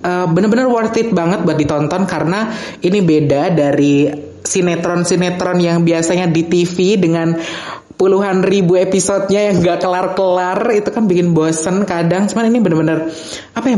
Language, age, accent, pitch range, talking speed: Indonesian, 20-39, native, 150-185 Hz, 145 wpm